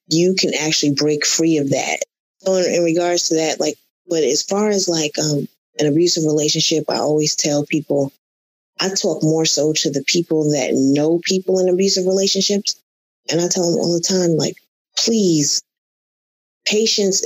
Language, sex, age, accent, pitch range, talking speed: English, female, 20-39, American, 145-170 Hz, 175 wpm